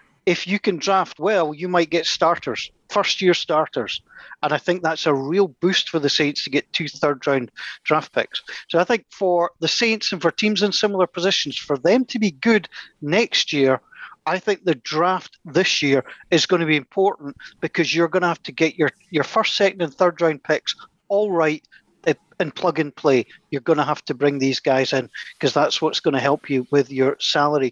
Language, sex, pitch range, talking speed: English, male, 145-185 Hz, 210 wpm